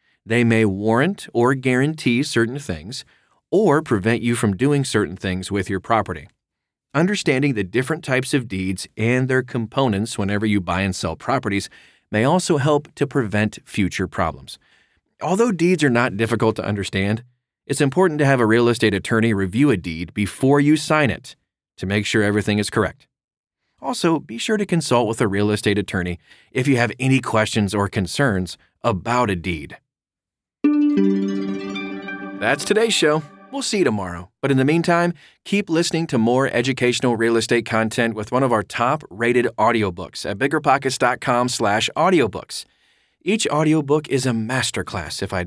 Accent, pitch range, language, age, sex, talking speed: American, 105-140 Hz, English, 30-49, male, 165 wpm